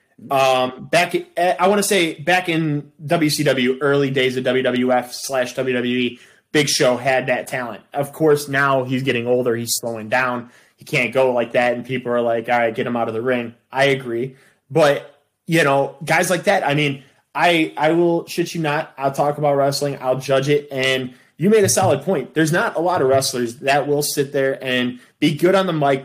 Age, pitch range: 20-39, 125-155 Hz